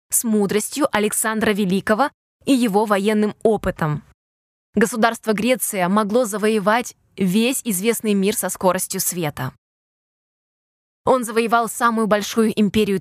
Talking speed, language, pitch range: 105 wpm, Russian, 200-235 Hz